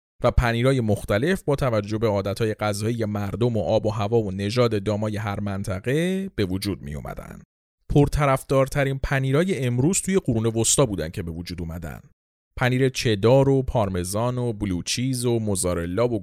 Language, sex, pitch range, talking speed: Persian, male, 100-145 Hz, 155 wpm